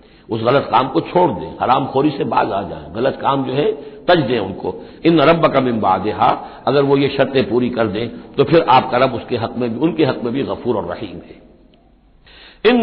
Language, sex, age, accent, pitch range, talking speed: Hindi, male, 60-79, native, 130-175 Hz, 225 wpm